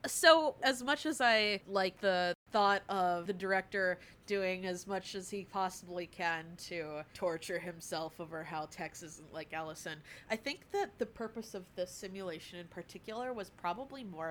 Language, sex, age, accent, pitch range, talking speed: English, female, 20-39, American, 170-205 Hz, 170 wpm